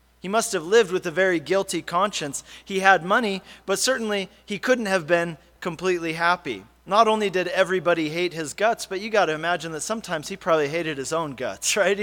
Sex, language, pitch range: male, English, 165-215 Hz